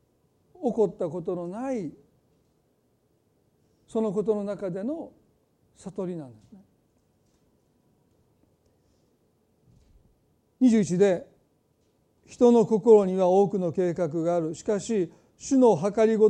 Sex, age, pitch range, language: male, 40-59, 180-245 Hz, Japanese